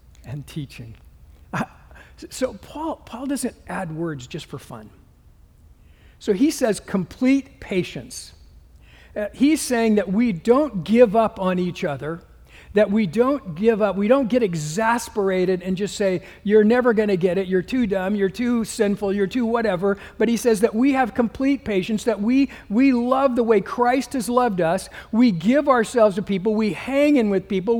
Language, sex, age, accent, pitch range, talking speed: English, male, 50-69, American, 165-235 Hz, 175 wpm